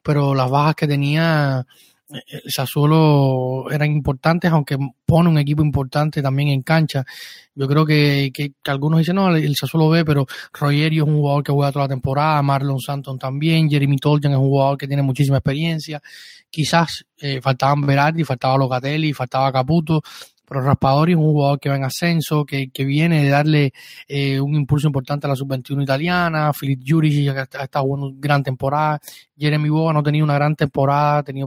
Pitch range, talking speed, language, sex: 140-155 Hz, 190 wpm, Spanish, male